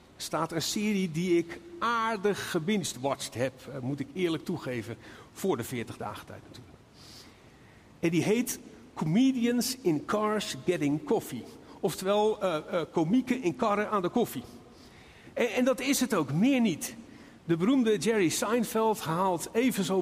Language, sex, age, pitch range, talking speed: Dutch, male, 50-69, 145-220 Hz, 150 wpm